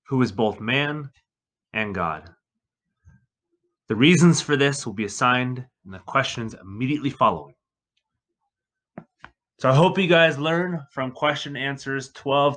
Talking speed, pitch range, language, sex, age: 135 wpm, 120-150 Hz, English, male, 20-39